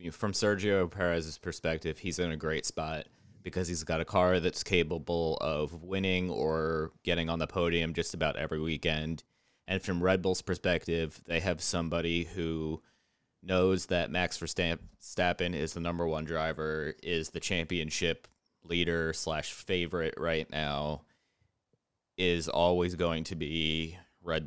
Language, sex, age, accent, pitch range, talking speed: English, male, 20-39, American, 80-90 Hz, 145 wpm